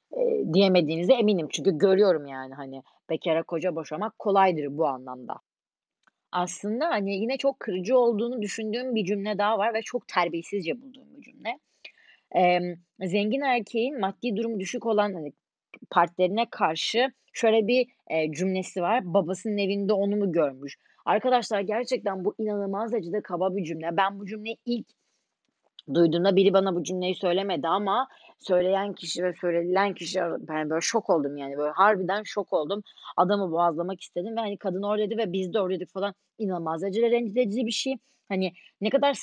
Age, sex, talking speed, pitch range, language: 30-49, female, 160 wpm, 175-215 Hz, Turkish